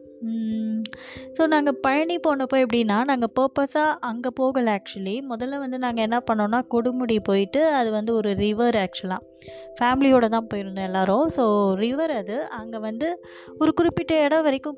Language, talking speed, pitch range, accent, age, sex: Tamil, 140 wpm, 210-260 Hz, native, 20-39, female